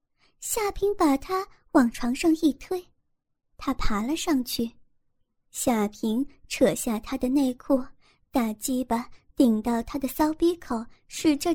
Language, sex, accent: Chinese, male, native